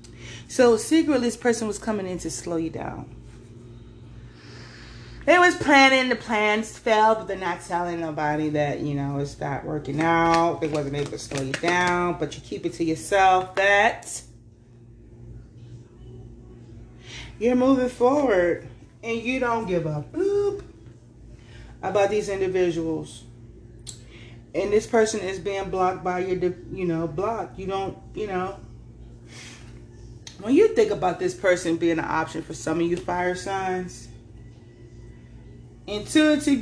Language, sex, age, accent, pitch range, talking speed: English, female, 30-49, American, 120-195 Hz, 140 wpm